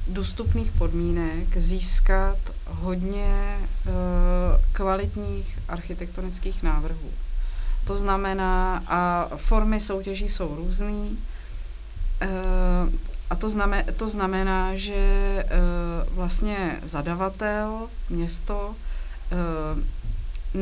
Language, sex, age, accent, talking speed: Czech, female, 30-49, native, 80 wpm